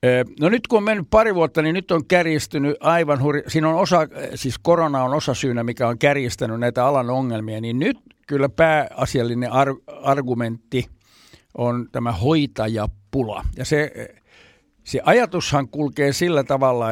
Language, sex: Finnish, male